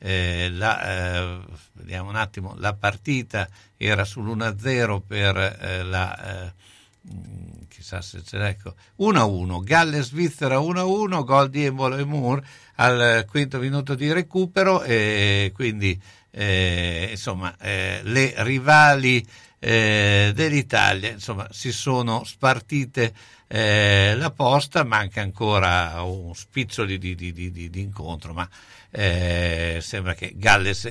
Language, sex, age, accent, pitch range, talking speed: Italian, male, 60-79, native, 95-130 Hz, 120 wpm